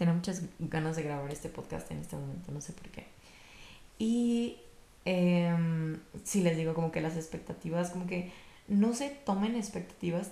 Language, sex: Spanish, female